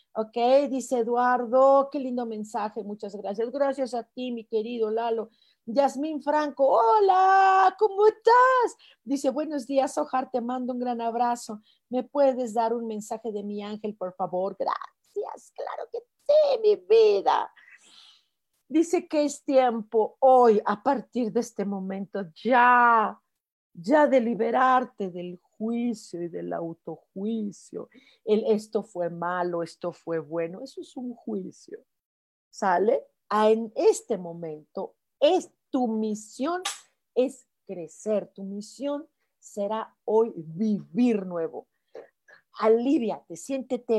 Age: 40-59